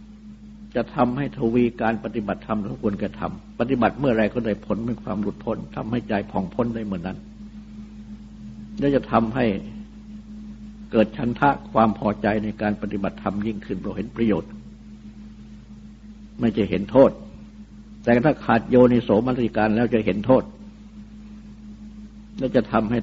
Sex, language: male, Thai